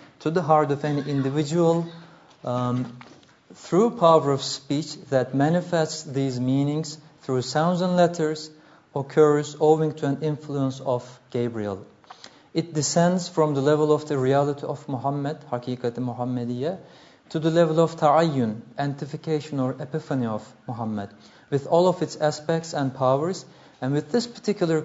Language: English